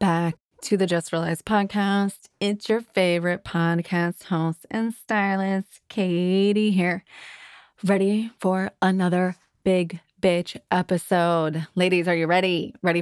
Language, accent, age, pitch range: English, American, 20-39, 170-210 Hz